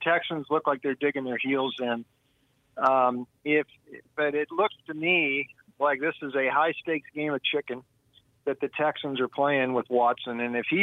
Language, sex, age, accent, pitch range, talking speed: English, male, 50-69, American, 130-160 Hz, 185 wpm